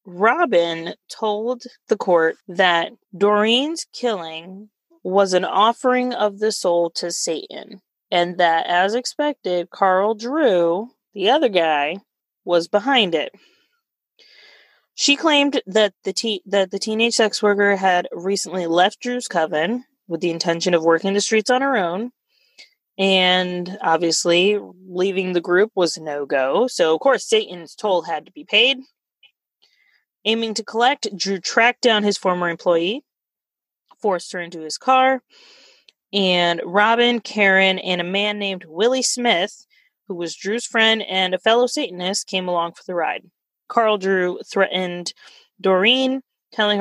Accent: American